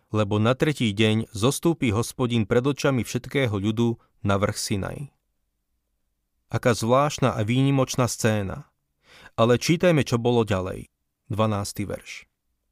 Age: 30-49